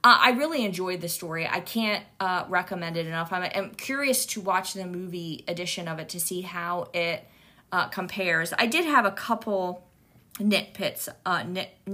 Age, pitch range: 20-39, 170-200 Hz